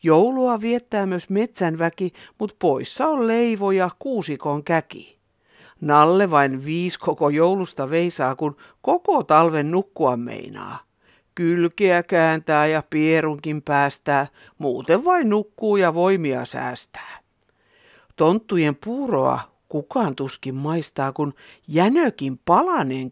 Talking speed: 105 wpm